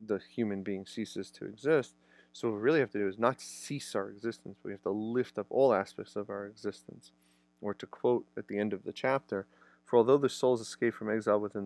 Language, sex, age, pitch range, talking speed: English, male, 30-49, 95-110 Hz, 230 wpm